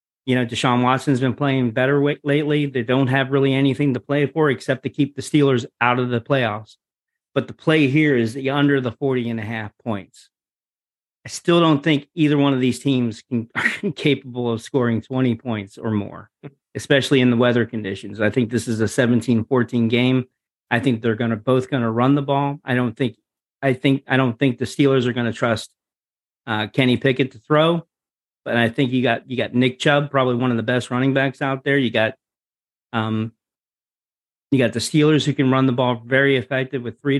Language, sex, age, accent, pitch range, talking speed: English, male, 40-59, American, 120-140 Hz, 215 wpm